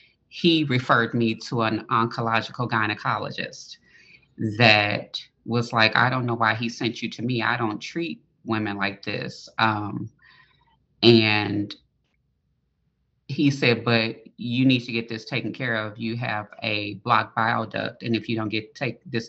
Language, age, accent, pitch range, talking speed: English, 30-49, American, 110-125 Hz, 160 wpm